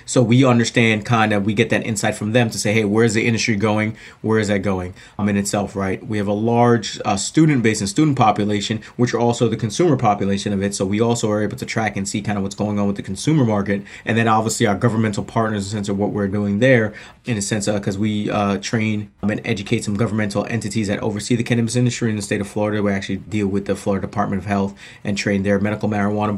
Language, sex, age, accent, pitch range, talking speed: English, male, 30-49, American, 105-120 Hz, 260 wpm